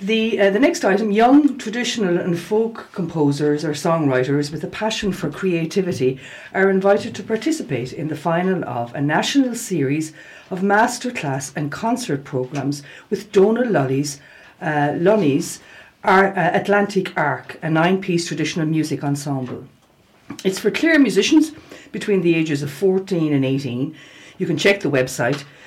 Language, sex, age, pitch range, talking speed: English, female, 60-79, 145-210 Hz, 145 wpm